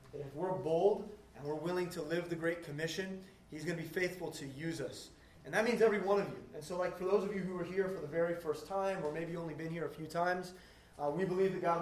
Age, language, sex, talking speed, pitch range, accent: 20-39, English, male, 275 wpm, 145-175 Hz, American